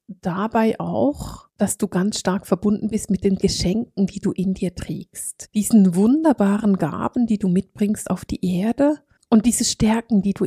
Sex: female